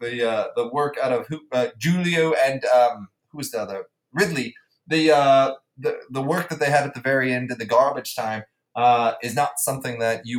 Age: 20-39